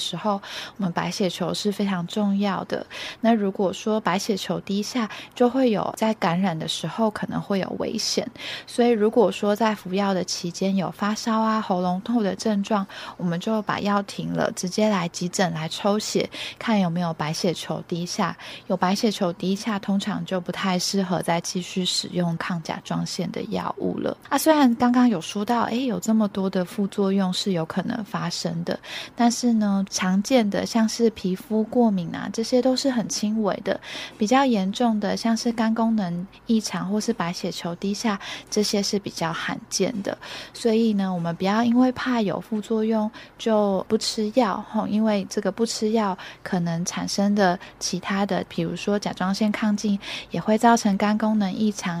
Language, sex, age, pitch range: Chinese, female, 20-39, 185-220 Hz